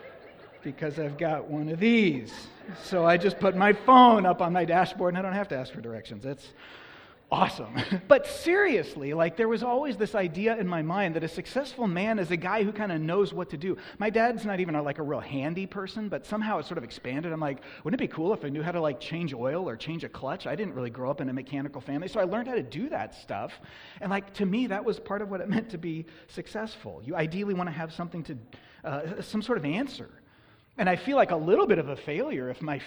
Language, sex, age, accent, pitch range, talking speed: English, male, 30-49, American, 150-205 Hz, 255 wpm